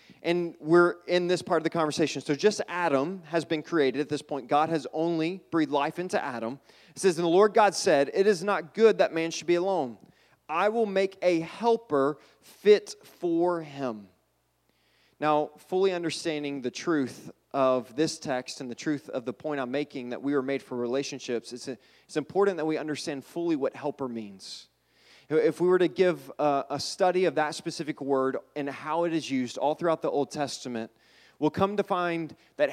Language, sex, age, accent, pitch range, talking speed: English, male, 30-49, American, 140-175 Hz, 195 wpm